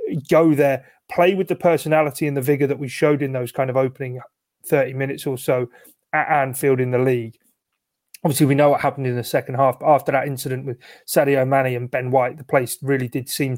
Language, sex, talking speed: English, male, 220 wpm